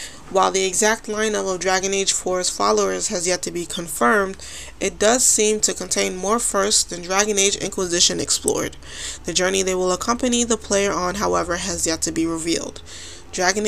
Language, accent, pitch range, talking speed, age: English, American, 170-210 Hz, 180 wpm, 20-39